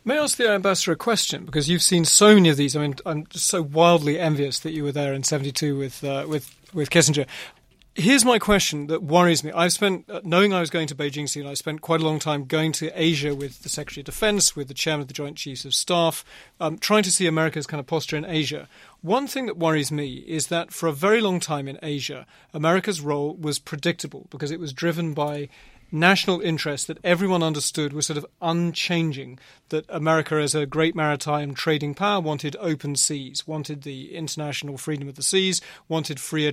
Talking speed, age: 215 wpm, 40-59